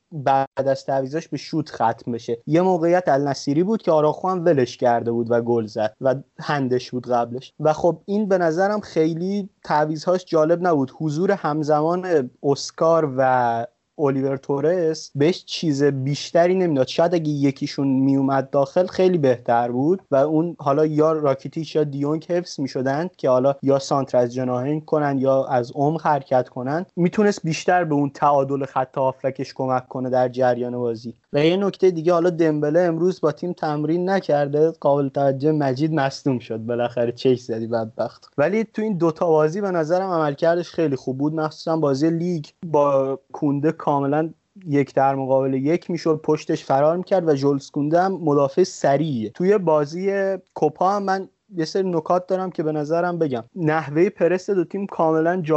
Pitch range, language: 135-170 Hz, Persian